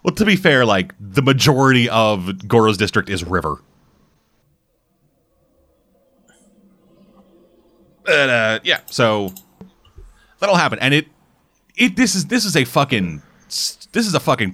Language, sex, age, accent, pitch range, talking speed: English, male, 30-49, American, 100-150 Hz, 130 wpm